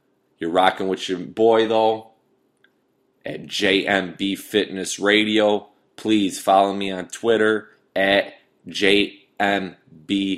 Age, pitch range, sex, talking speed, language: 20-39, 85-105 Hz, male, 100 wpm, English